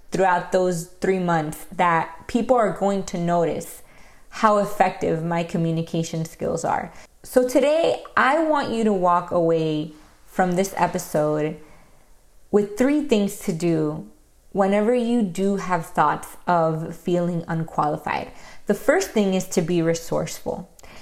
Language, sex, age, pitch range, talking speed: English, female, 20-39, 165-195 Hz, 135 wpm